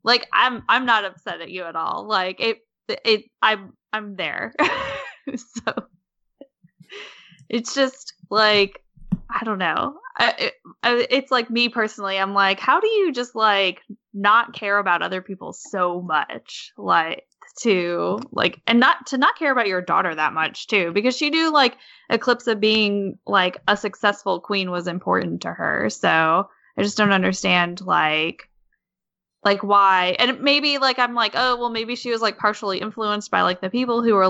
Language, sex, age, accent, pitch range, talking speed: English, female, 10-29, American, 190-240 Hz, 170 wpm